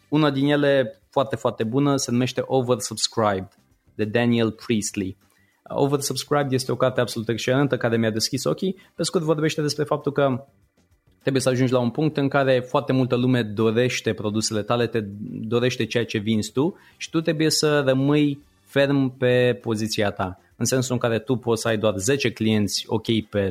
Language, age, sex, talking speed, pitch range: Romanian, 20-39, male, 180 wpm, 105-130 Hz